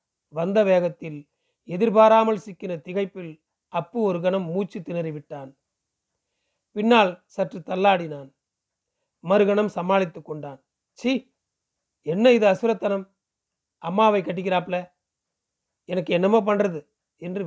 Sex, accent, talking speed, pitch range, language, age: male, native, 95 wpm, 170-210 Hz, Tamil, 40-59